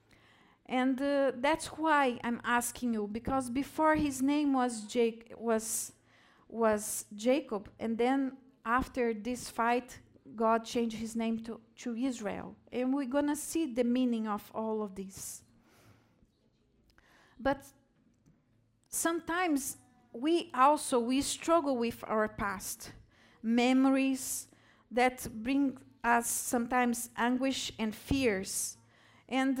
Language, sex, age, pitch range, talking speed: English, female, 50-69, 230-275 Hz, 115 wpm